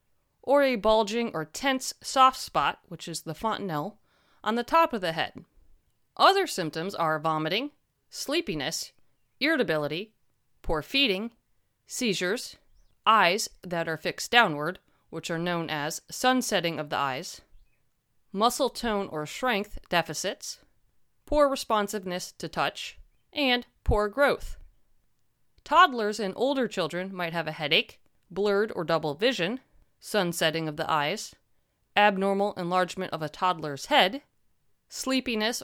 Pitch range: 170-245 Hz